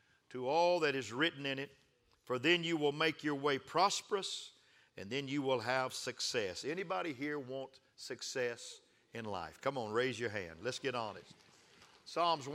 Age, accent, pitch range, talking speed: 50-69, American, 135-165 Hz, 175 wpm